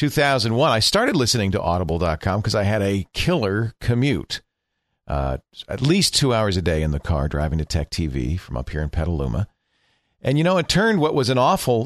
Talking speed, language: 200 wpm, English